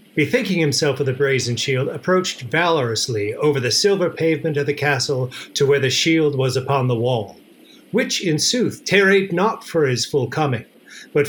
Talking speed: 175 wpm